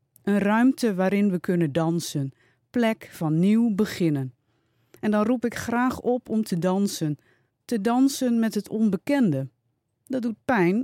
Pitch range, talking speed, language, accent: 150-215 Hz, 150 wpm, Dutch, Dutch